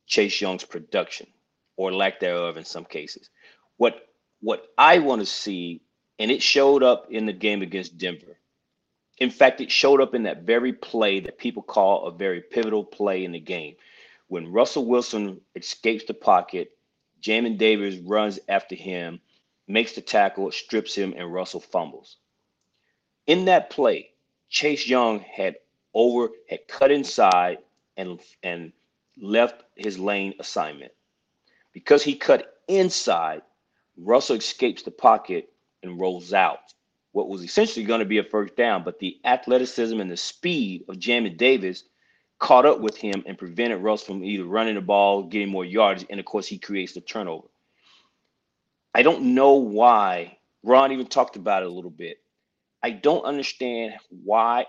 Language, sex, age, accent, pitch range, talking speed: English, male, 30-49, American, 95-125 Hz, 160 wpm